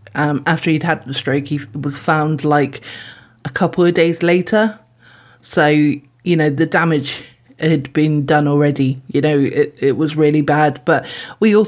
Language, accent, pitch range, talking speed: English, British, 145-165 Hz, 175 wpm